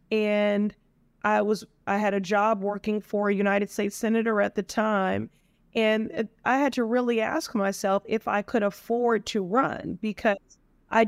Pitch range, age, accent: 205-235 Hz, 30-49, American